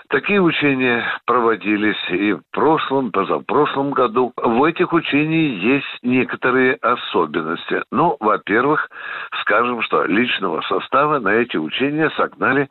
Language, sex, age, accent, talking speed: Russian, male, 60-79, native, 125 wpm